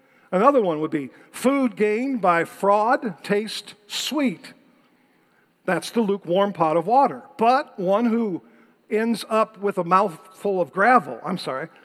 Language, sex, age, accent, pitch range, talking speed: English, male, 50-69, American, 180-235 Hz, 140 wpm